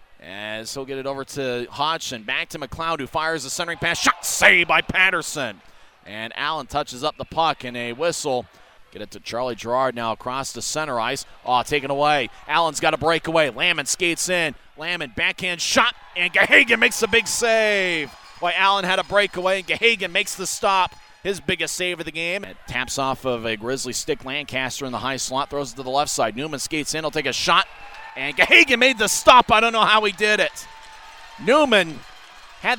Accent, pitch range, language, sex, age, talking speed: American, 135-190 Hz, English, male, 30-49, 205 wpm